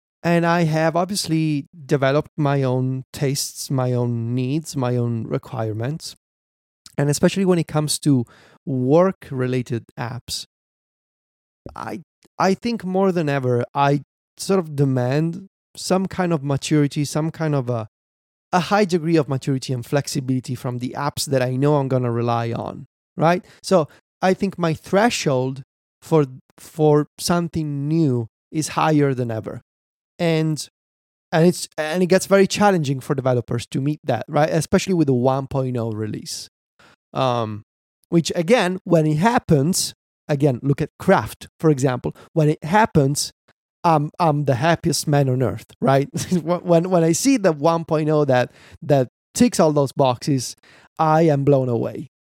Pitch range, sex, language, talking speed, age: 130-170 Hz, male, English, 150 wpm, 30-49